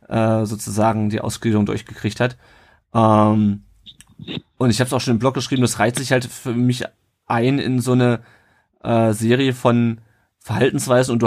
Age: 30-49